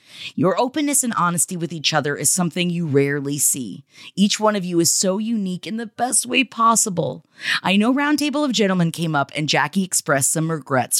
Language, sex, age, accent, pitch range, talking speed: English, female, 30-49, American, 165-230 Hz, 195 wpm